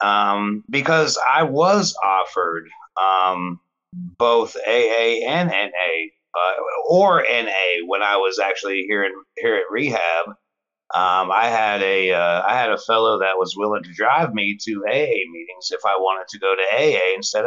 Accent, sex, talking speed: American, male, 165 wpm